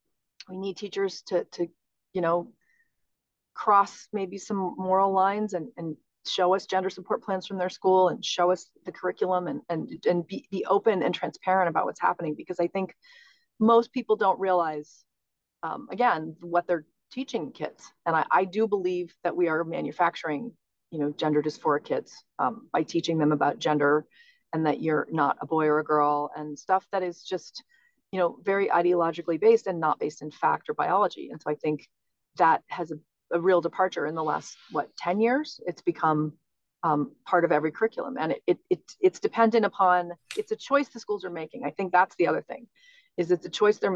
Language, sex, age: English, female, 40-59